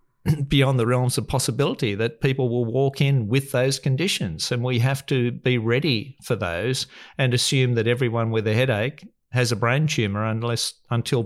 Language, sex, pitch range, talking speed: English, male, 115-140 Hz, 180 wpm